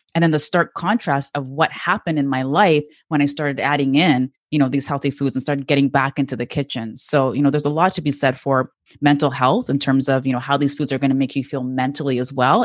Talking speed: 270 wpm